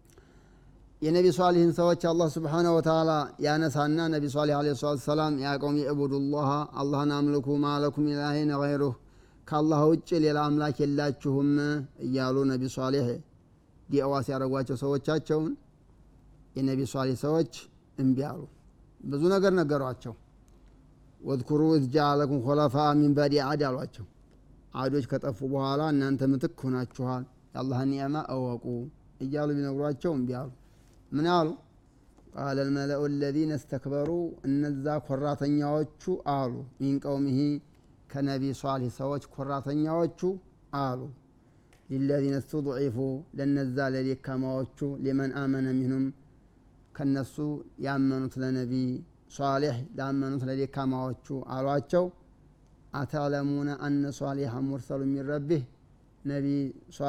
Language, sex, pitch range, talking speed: Amharic, male, 135-150 Hz, 85 wpm